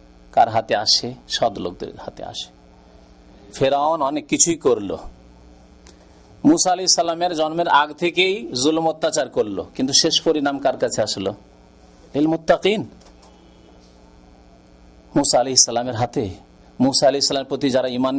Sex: male